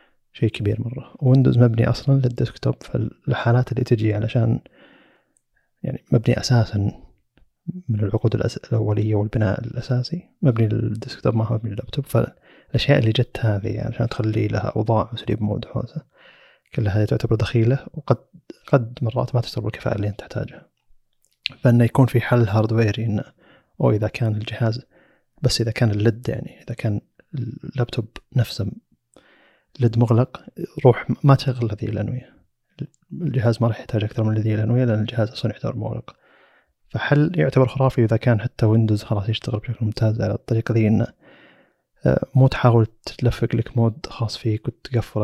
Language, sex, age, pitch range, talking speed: Arabic, male, 30-49, 110-130 Hz, 145 wpm